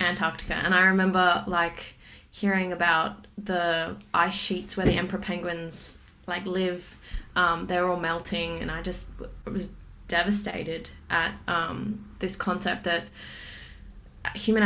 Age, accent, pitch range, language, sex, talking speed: 20-39, Australian, 170-195 Hz, English, female, 125 wpm